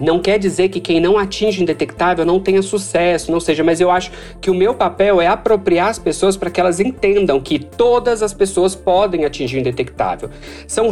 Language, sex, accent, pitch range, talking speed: Portuguese, male, Brazilian, 160-205 Hz, 200 wpm